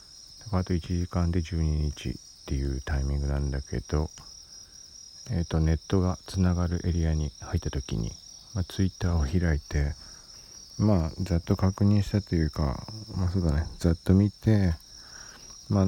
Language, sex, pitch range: Japanese, male, 75-95 Hz